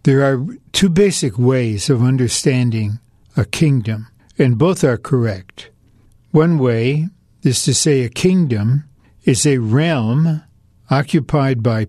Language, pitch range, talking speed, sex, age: English, 115-150 Hz, 125 wpm, male, 60-79